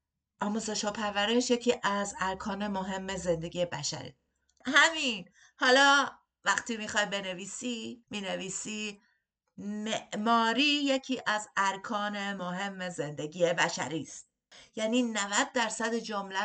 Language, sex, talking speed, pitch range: Persian, female, 100 wpm, 155-210 Hz